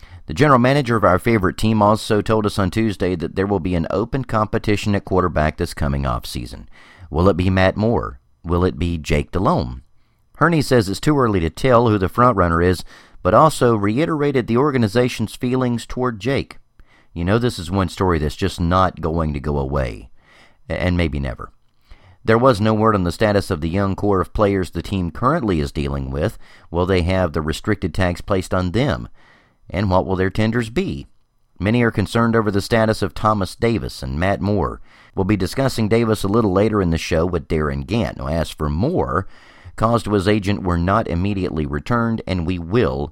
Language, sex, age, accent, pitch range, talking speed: English, male, 40-59, American, 85-110 Hz, 200 wpm